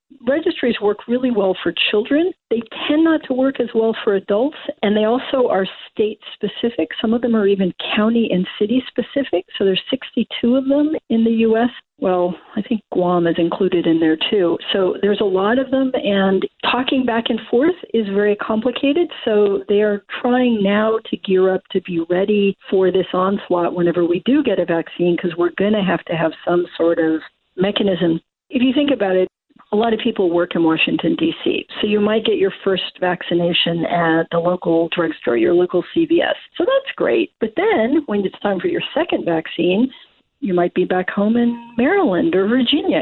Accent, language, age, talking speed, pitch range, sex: American, English, 50-69, 195 wpm, 180-245 Hz, female